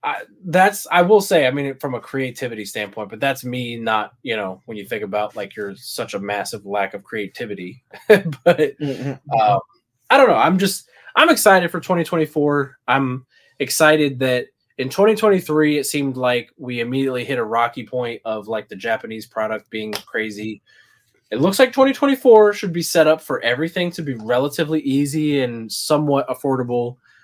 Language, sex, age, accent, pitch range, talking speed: English, male, 20-39, American, 110-155 Hz, 170 wpm